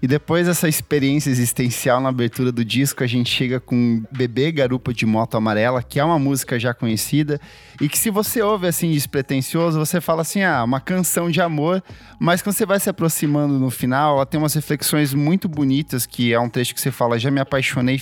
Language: Portuguese